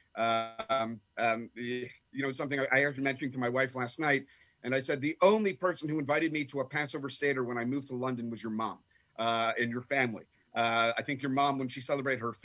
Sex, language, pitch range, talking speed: male, English, 125-155 Hz, 225 wpm